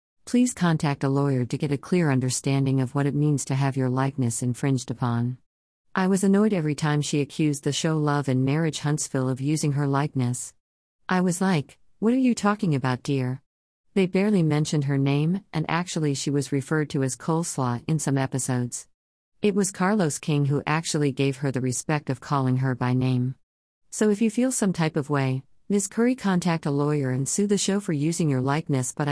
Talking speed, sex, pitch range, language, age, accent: 200 wpm, female, 130-165 Hz, English, 50-69, American